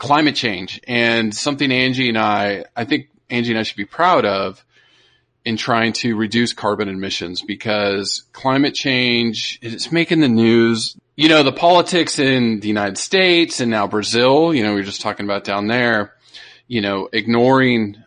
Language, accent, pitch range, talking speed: English, American, 105-135 Hz, 175 wpm